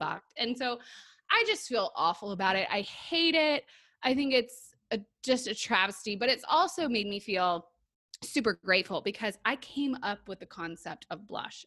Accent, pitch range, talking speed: American, 180-255 Hz, 175 wpm